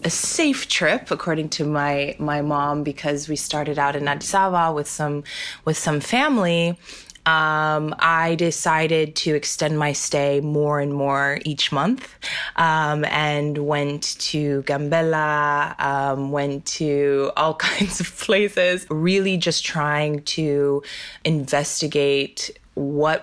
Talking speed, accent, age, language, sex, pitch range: 125 wpm, American, 20-39, English, female, 140-165 Hz